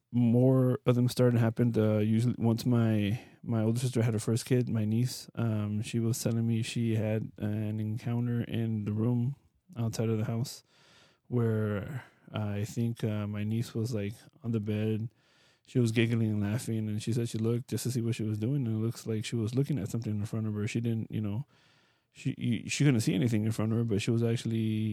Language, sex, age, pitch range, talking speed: English, male, 20-39, 110-120 Hz, 225 wpm